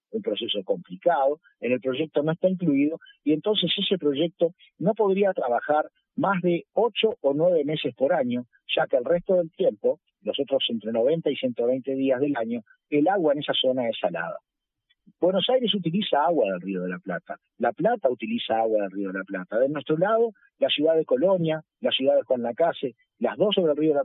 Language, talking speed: Spanish, 205 wpm